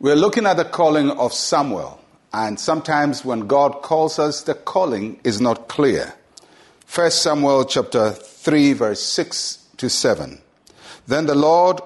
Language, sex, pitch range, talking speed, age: English, male, 115-150 Hz, 145 wpm, 60-79